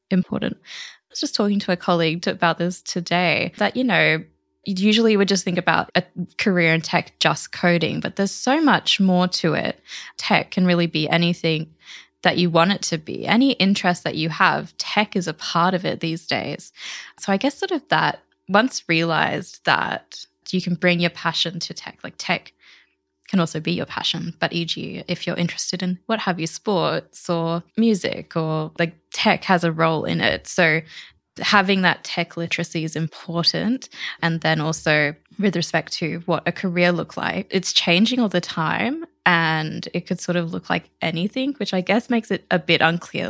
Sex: female